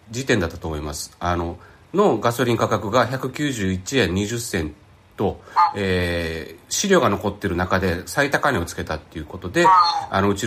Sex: male